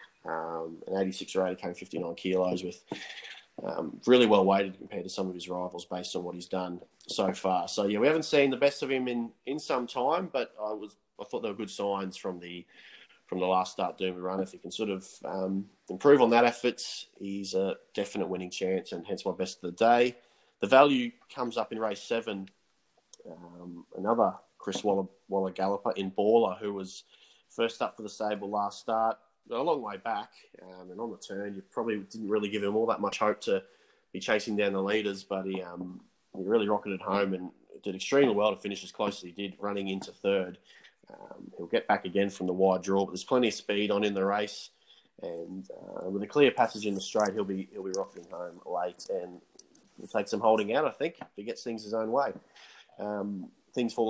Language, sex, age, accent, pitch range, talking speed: English, male, 20-39, Australian, 95-110 Hz, 220 wpm